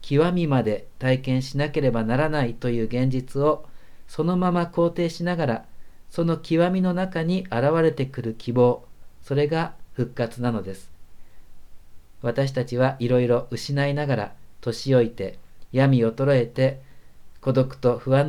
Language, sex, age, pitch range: Japanese, male, 50-69, 110-140 Hz